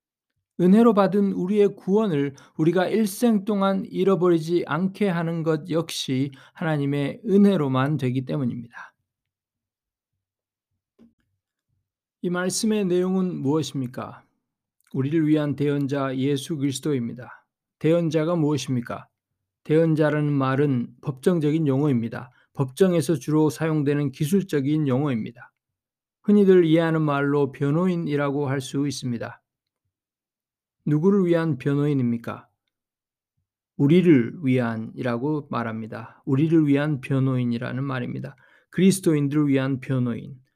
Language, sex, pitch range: Korean, male, 130-170 Hz